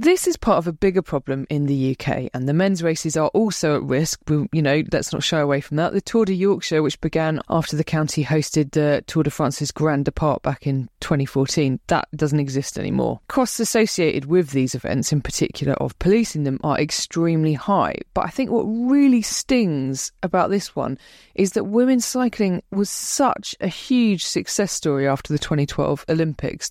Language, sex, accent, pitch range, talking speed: English, female, British, 150-205 Hz, 195 wpm